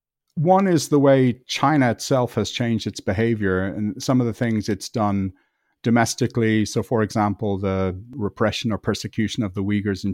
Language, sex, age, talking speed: English, male, 40-59, 170 wpm